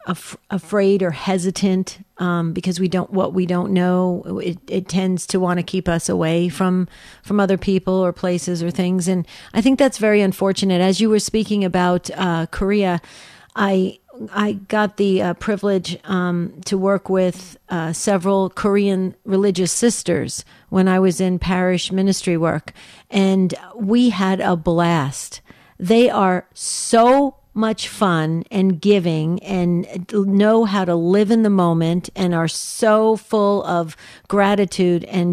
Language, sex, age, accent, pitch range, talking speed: English, female, 50-69, American, 180-205 Hz, 155 wpm